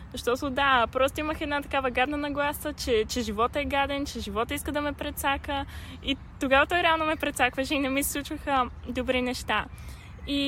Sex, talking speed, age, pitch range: female, 190 wpm, 10-29, 225-290 Hz